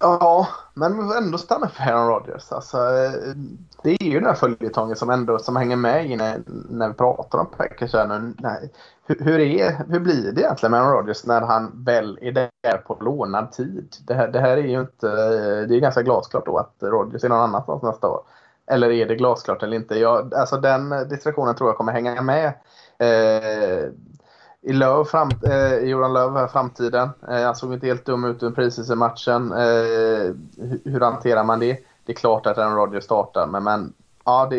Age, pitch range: 20-39, 115-140 Hz